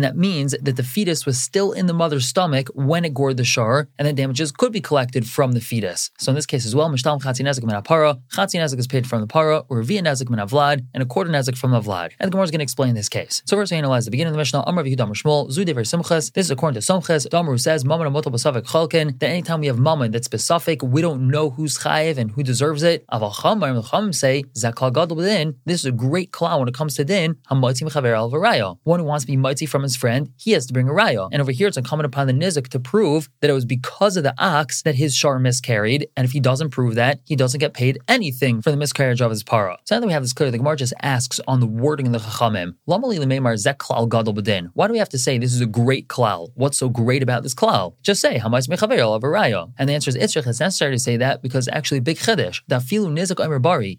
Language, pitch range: English, 125-165 Hz